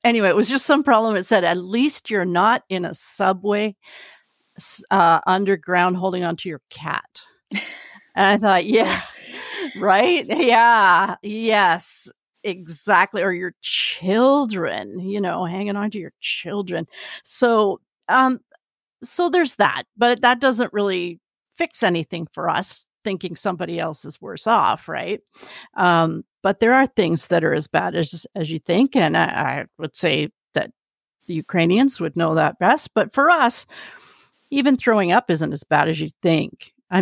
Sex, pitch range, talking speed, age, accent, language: female, 175-225 Hz, 160 wpm, 50-69, American, English